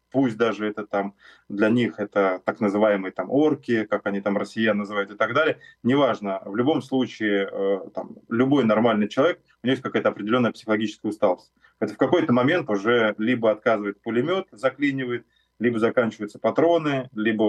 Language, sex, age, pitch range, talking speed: Russian, male, 20-39, 105-125 Hz, 165 wpm